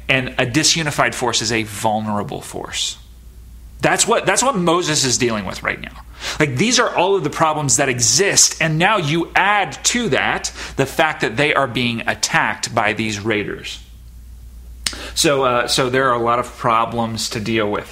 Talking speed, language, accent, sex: 185 wpm, English, American, male